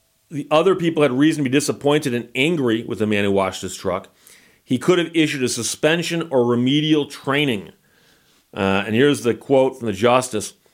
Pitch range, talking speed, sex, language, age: 115-145 Hz, 190 wpm, male, English, 40-59